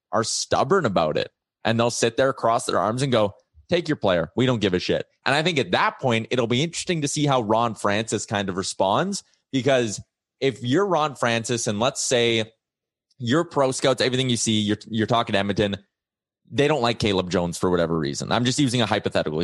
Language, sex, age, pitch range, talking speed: English, male, 20-39, 105-130 Hz, 215 wpm